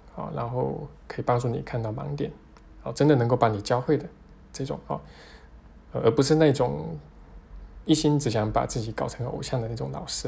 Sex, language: male, Chinese